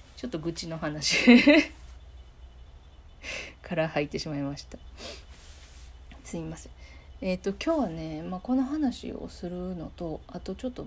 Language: Japanese